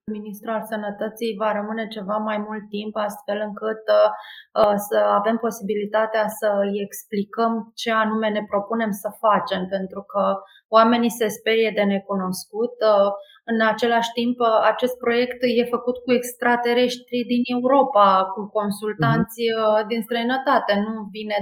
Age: 20-39